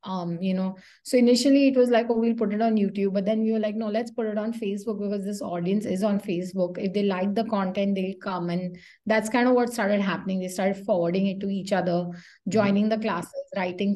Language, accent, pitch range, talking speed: English, Indian, 190-230 Hz, 240 wpm